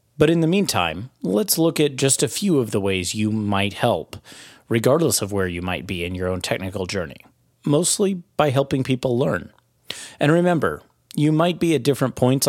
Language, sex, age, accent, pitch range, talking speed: English, male, 30-49, American, 110-150 Hz, 190 wpm